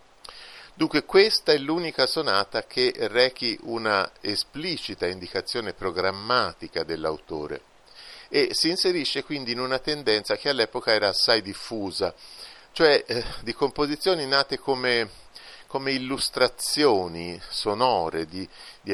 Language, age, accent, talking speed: Italian, 50-69, native, 110 wpm